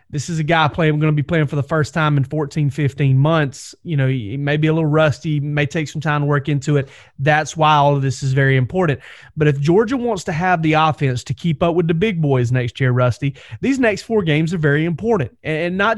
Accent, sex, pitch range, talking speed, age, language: American, male, 140-165 Hz, 255 wpm, 30-49, English